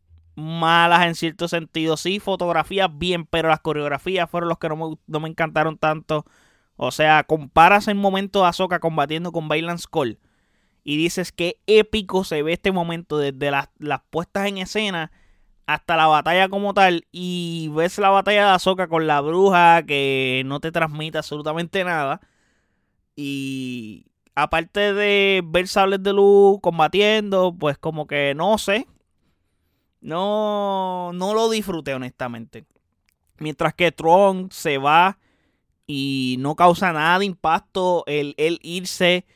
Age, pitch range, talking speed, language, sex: 20-39, 145-180 Hz, 145 wpm, Spanish, male